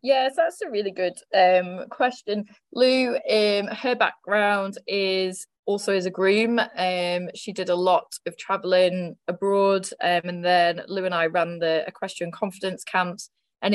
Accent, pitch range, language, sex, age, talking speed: British, 175-215 Hz, English, female, 20-39, 155 wpm